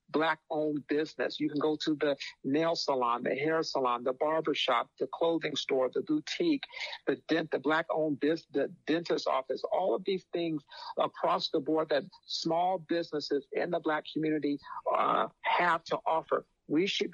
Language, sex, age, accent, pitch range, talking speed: English, male, 50-69, American, 155-190 Hz, 170 wpm